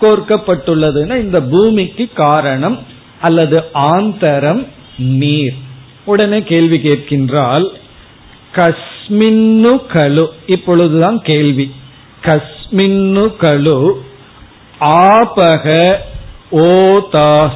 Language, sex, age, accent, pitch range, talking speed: Tamil, male, 50-69, native, 135-185 Hz, 60 wpm